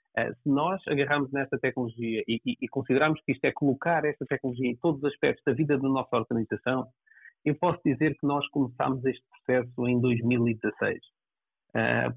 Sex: male